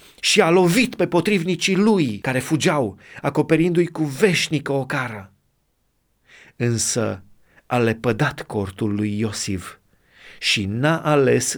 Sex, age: male, 30-49